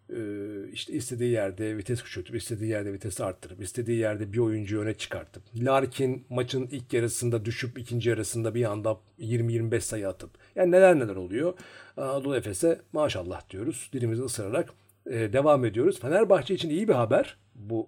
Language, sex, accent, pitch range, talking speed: Turkish, male, native, 105-130 Hz, 155 wpm